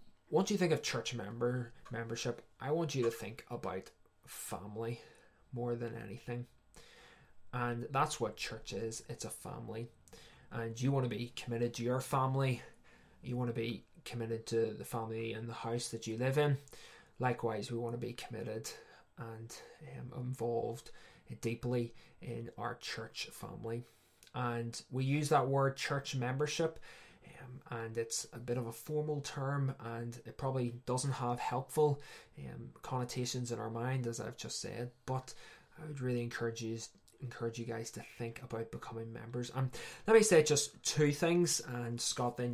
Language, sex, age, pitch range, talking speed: English, male, 20-39, 115-135 Hz, 165 wpm